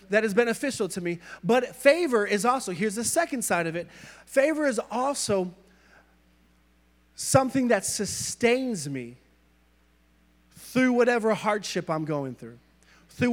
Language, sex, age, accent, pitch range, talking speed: English, male, 30-49, American, 160-250 Hz, 130 wpm